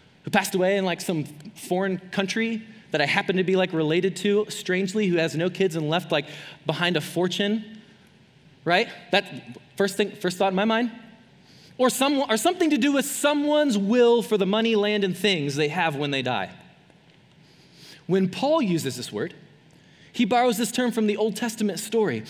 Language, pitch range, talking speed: English, 180-230 Hz, 190 wpm